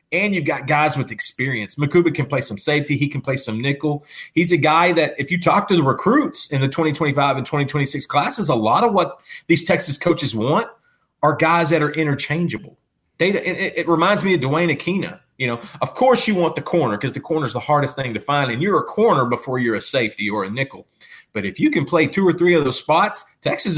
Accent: American